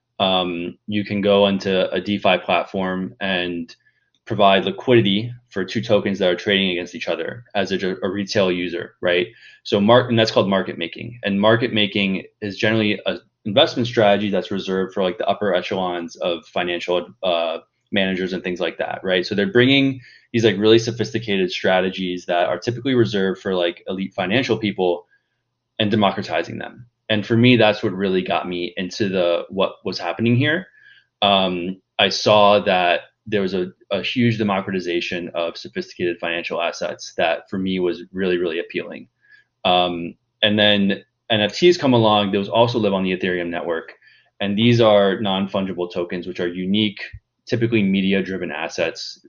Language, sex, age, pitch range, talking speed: English, male, 20-39, 90-110 Hz, 165 wpm